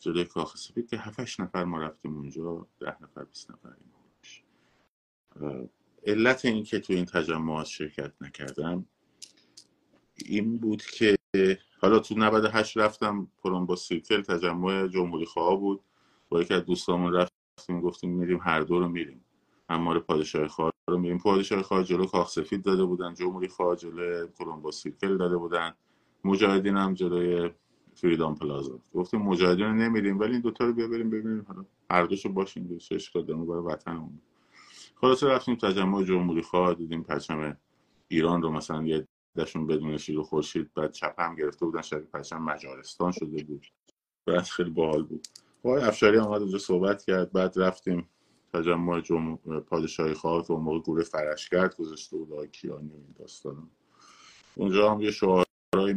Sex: male